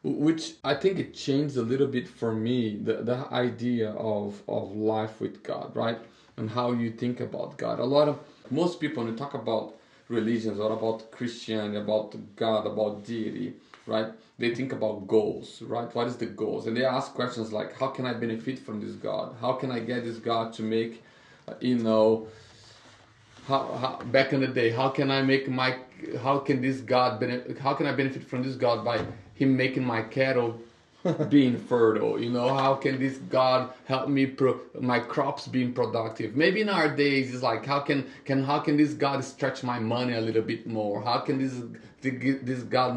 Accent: Brazilian